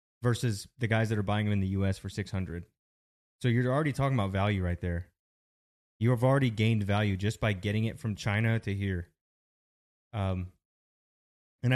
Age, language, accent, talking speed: 20-39, English, American, 180 wpm